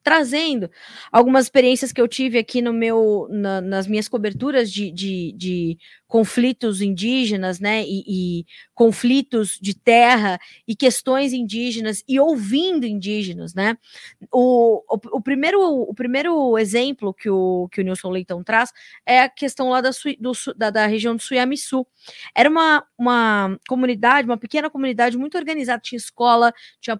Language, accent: Portuguese, Brazilian